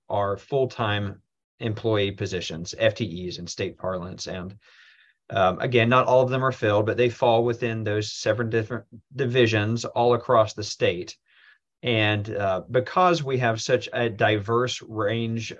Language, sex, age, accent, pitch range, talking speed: English, male, 30-49, American, 105-125 Hz, 145 wpm